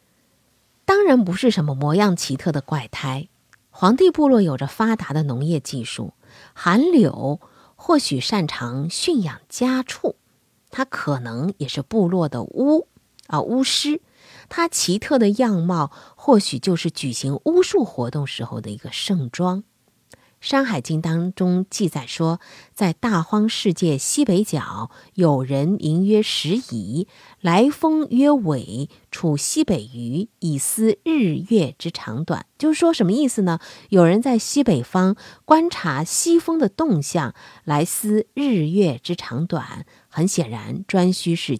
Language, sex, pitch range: Chinese, female, 150-240 Hz